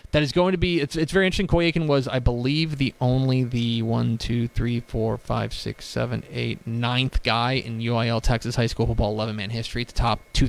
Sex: male